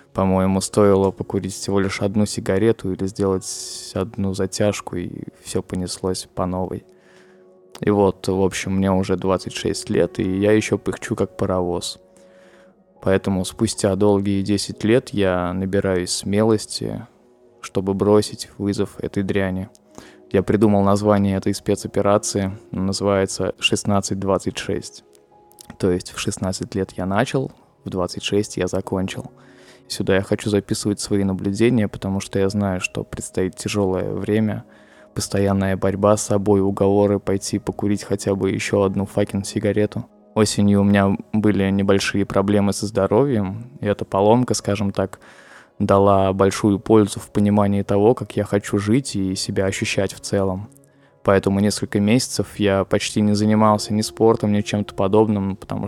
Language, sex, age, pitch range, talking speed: Russian, male, 20-39, 95-105 Hz, 140 wpm